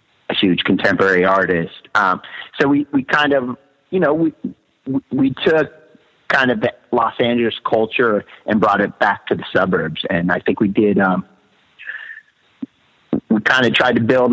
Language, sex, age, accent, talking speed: English, male, 40-59, American, 170 wpm